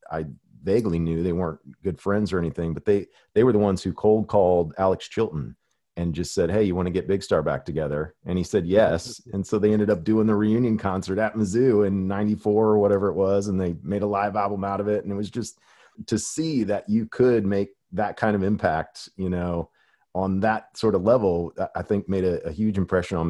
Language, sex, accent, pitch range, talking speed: English, male, American, 90-105 Hz, 235 wpm